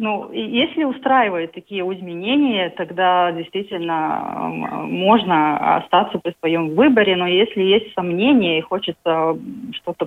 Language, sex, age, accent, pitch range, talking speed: Russian, female, 30-49, native, 175-230 Hz, 120 wpm